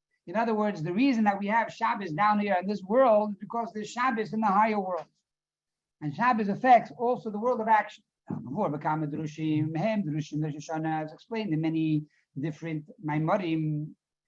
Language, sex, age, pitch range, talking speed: English, male, 60-79, 160-220 Hz, 180 wpm